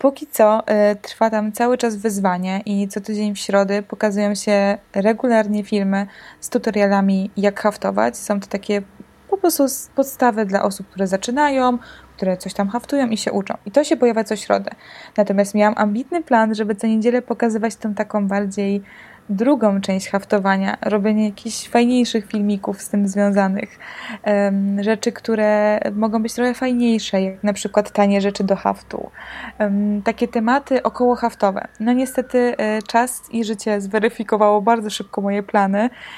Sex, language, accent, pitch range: female, Polish, native, 210-245 Hz